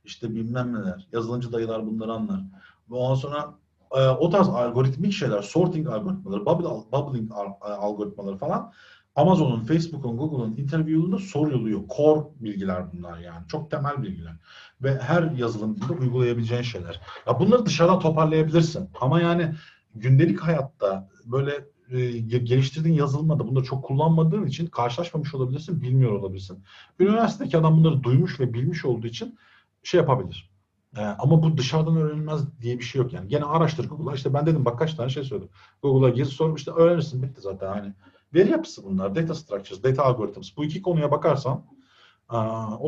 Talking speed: 150 wpm